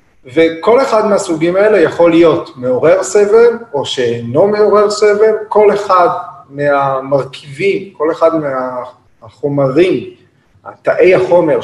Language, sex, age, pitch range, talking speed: Hebrew, male, 30-49, 130-195 Hz, 105 wpm